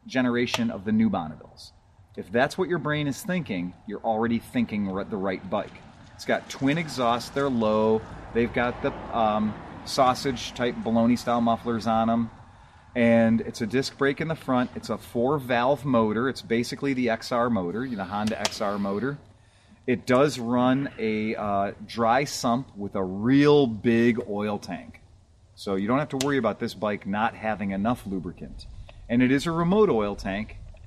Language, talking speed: English, 180 wpm